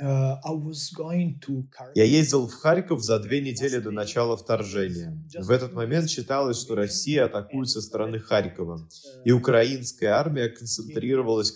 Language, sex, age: Russian, male, 20-39